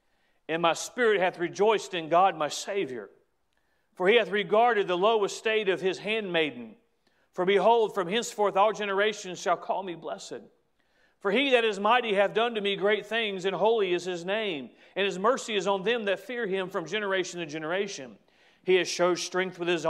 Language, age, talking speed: English, 40-59, 195 wpm